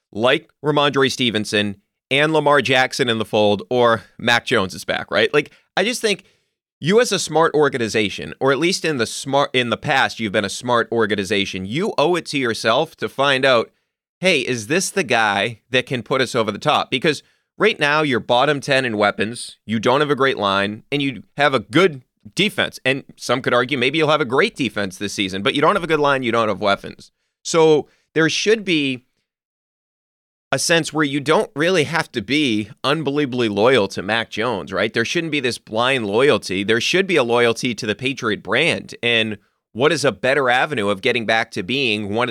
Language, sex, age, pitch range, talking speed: English, male, 30-49, 110-150 Hz, 205 wpm